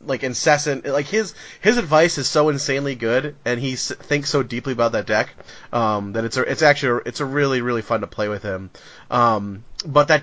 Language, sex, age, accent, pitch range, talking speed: English, male, 30-49, American, 115-140 Hz, 225 wpm